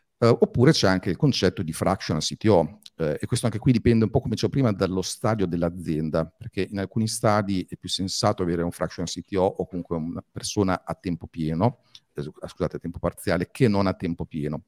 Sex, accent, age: male, native, 50-69